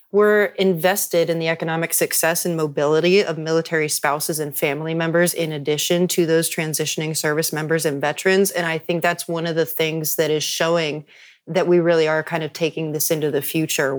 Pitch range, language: 155-180 Hz, English